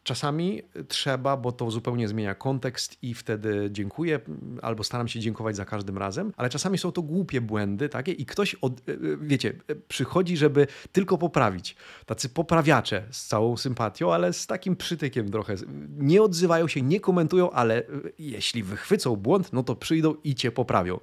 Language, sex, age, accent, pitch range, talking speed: Polish, male, 30-49, native, 110-145 Hz, 165 wpm